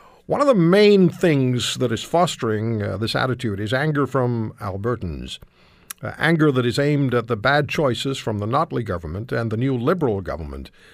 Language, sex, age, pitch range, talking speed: English, male, 60-79, 115-155 Hz, 180 wpm